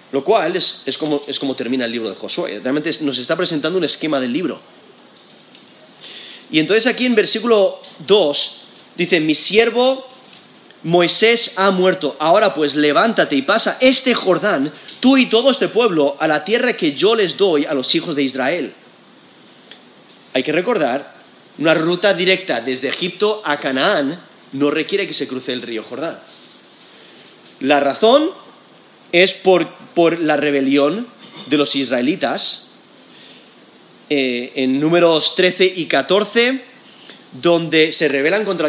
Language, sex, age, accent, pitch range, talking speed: Spanish, male, 30-49, Spanish, 150-225 Hz, 145 wpm